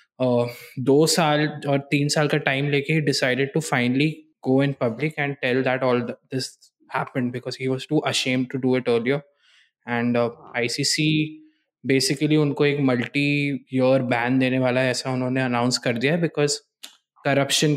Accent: native